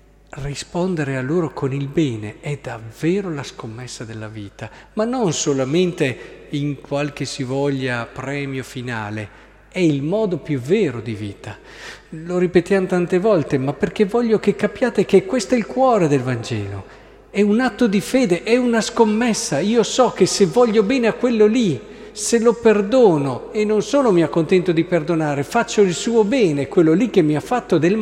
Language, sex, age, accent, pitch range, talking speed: Italian, male, 50-69, native, 135-190 Hz, 175 wpm